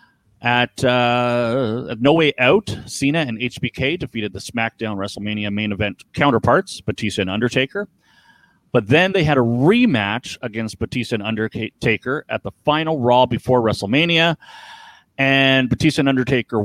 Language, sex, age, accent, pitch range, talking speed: English, male, 30-49, American, 105-140 Hz, 140 wpm